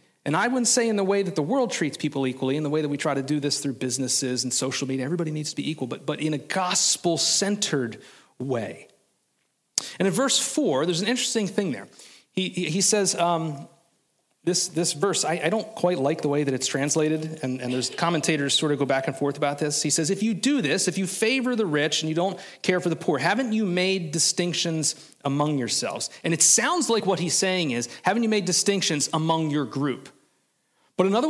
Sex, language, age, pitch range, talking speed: male, English, 30-49, 150-195 Hz, 225 wpm